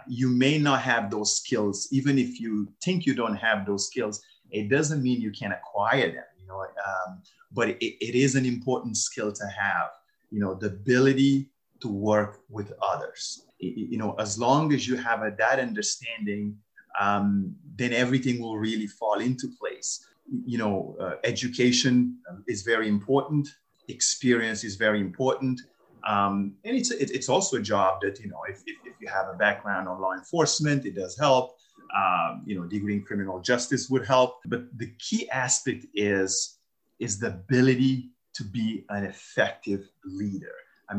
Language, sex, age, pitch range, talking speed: English, male, 30-49, 105-130 Hz, 175 wpm